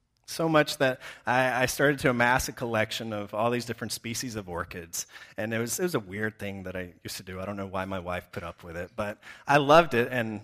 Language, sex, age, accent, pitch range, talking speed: English, male, 30-49, American, 115-155 Hz, 260 wpm